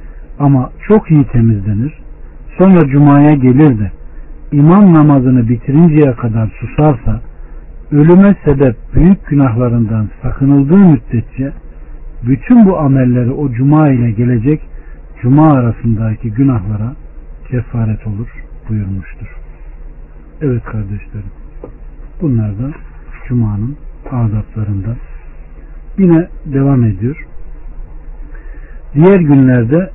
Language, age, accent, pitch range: Turkish, 60-79, native, 115-150 Hz